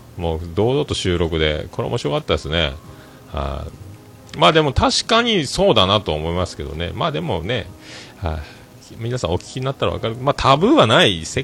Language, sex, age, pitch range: Japanese, male, 40-59, 85-130 Hz